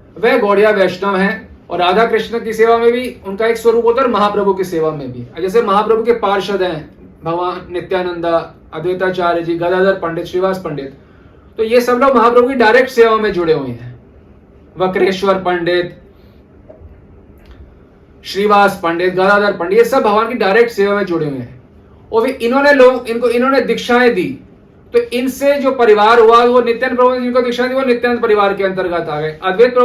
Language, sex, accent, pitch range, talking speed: Hindi, male, native, 175-235 Hz, 175 wpm